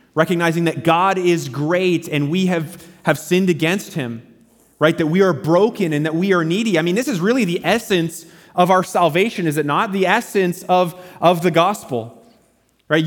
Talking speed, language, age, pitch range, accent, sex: 195 wpm, English, 30-49, 180-245 Hz, American, male